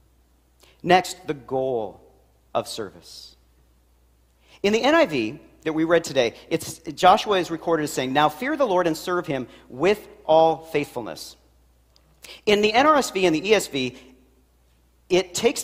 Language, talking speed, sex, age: English, 135 wpm, male, 40-59